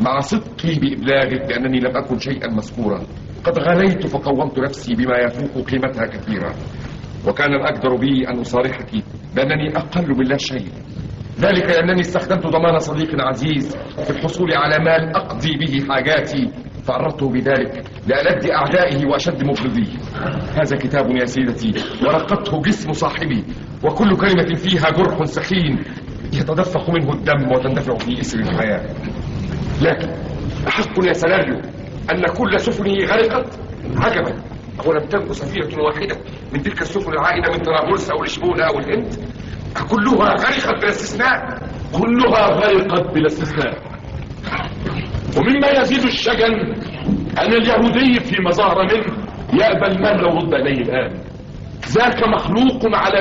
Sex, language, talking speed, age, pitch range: male, Arabic, 125 wpm, 50-69, 135-195 Hz